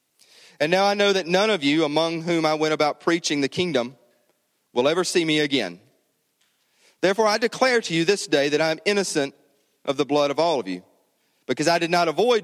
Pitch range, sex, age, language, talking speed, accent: 145-185 Hz, male, 40-59, English, 210 wpm, American